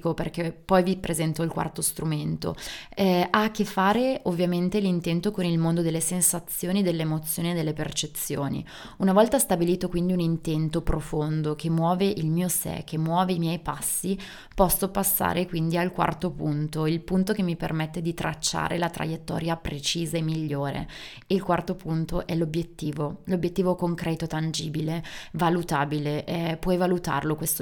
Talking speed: 155 wpm